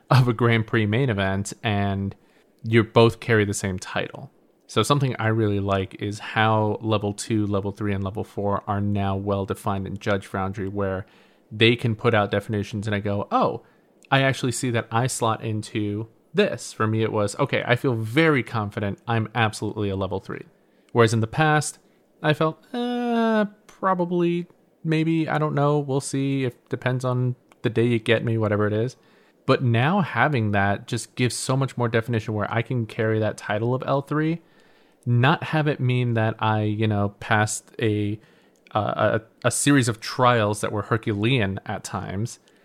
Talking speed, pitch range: 185 wpm, 105-130 Hz